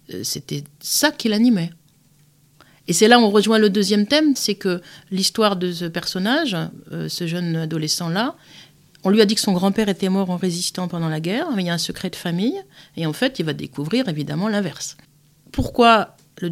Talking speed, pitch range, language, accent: 195 wpm, 160-215 Hz, French, French